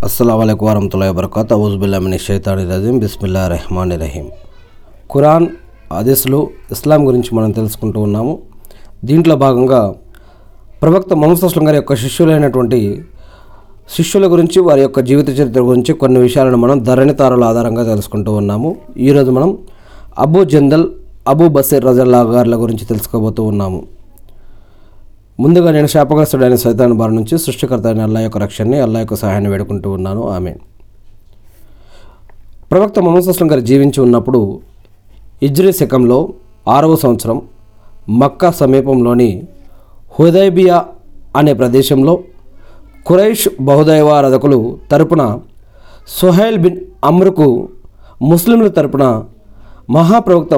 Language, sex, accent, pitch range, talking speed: Telugu, male, native, 100-145 Hz, 105 wpm